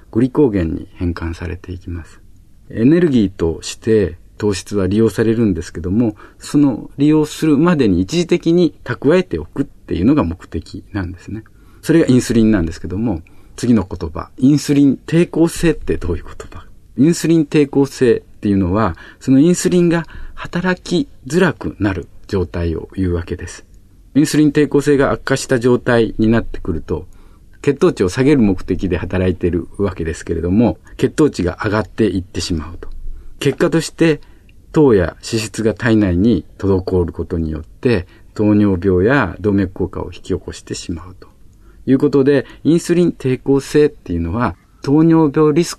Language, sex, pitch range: Japanese, male, 90-135 Hz